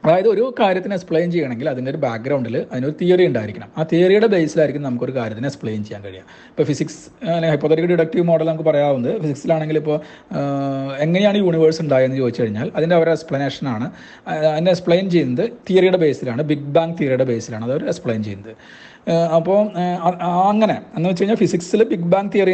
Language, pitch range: Malayalam, 140-185 Hz